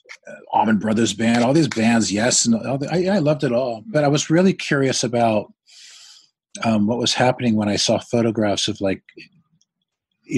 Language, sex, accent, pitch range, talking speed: English, male, American, 100-125 Hz, 185 wpm